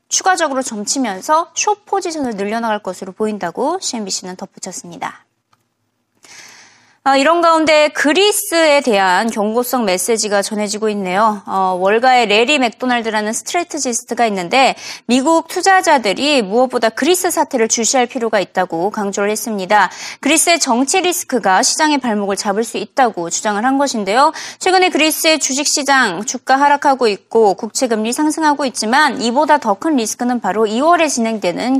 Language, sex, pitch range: Korean, female, 210-305 Hz